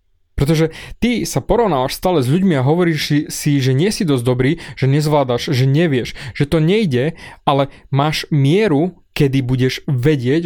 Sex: male